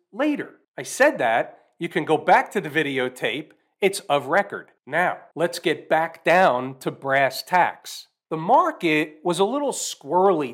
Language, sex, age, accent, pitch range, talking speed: English, male, 40-59, American, 155-195 Hz, 160 wpm